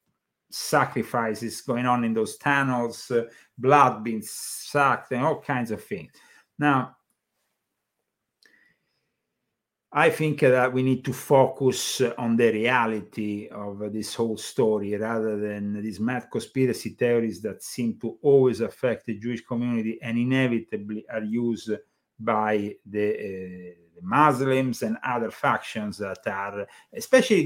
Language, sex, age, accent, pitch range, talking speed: English, male, 50-69, Italian, 110-135 Hz, 125 wpm